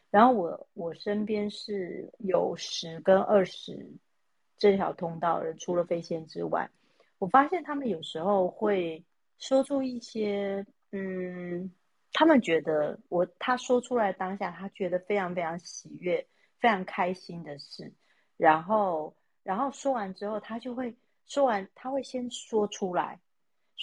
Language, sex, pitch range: Chinese, female, 175-235 Hz